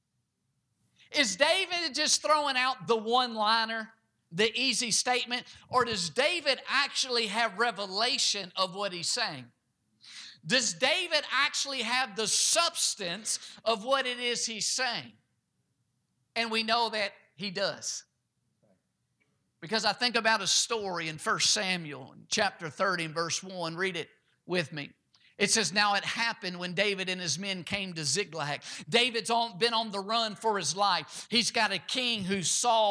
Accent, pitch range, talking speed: American, 180-230 Hz, 150 wpm